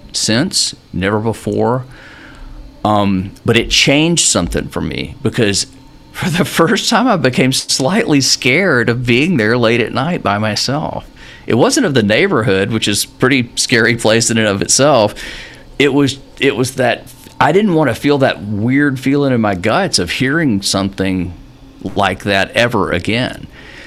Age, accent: 40-59, American